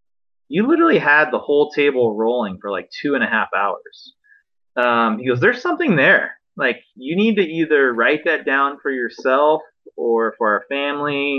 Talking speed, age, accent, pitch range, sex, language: 180 wpm, 30-49, American, 115-170 Hz, male, English